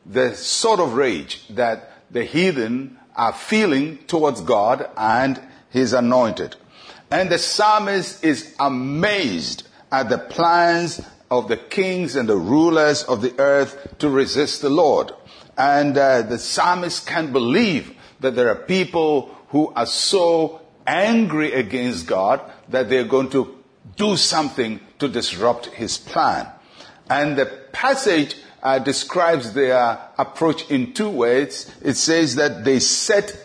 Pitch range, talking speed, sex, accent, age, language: 130-185 Hz, 140 wpm, male, Nigerian, 50-69, English